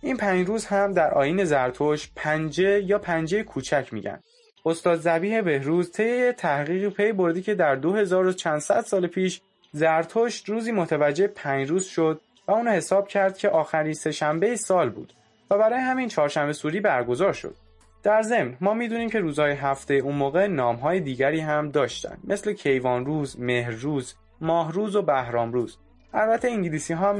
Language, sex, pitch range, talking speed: Persian, male, 140-205 Hz, 160 wpm